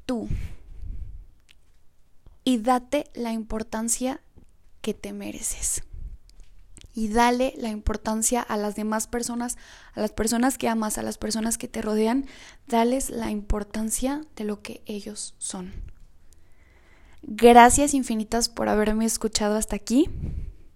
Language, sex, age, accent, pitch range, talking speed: Spanish, female, 10-29, Mexican, 210-250 Hz, 120 wpm